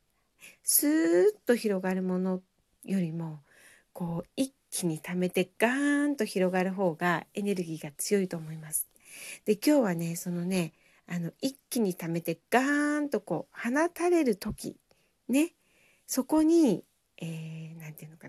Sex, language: female, Japanese